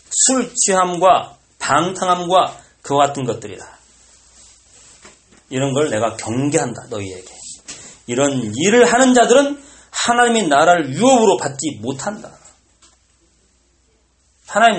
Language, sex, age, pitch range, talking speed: English, male, 40-59, 120-205 Hz, 85 wpm